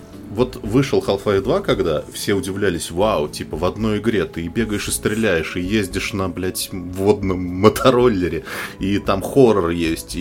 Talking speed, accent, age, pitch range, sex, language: 160 wpm, native, 20-39, 85-105 Hz, male, Russian